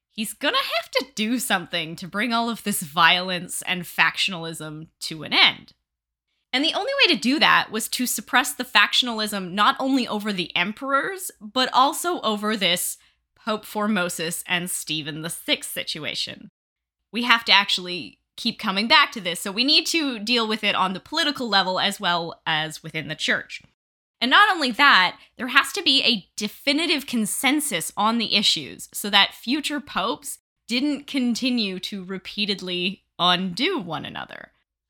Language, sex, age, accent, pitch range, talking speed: English, female, 20-39, American, 180-260 Hz, 165 wpm